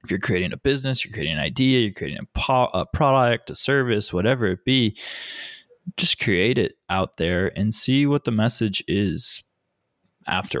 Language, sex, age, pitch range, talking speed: English, male, 20-39, 100-125 Hz, 180 wpm